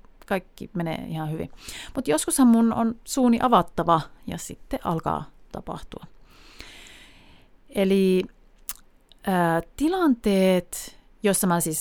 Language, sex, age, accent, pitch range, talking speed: Finnish, female, 30-49, native, 160-230 Hz, 100 wpm